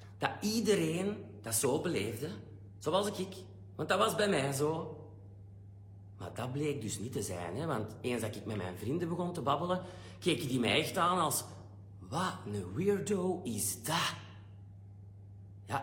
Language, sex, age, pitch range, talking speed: Dutch, male, 40-59, 100-155 Hz, 165 wpm